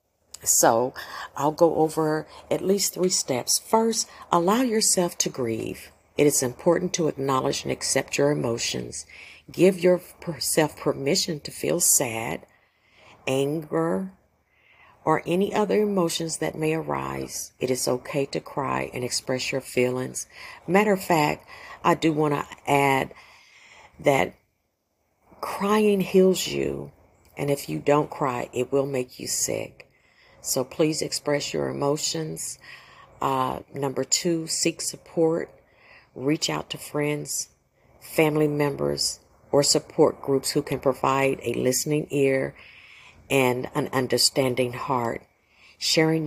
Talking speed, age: 125 wpm, 50-69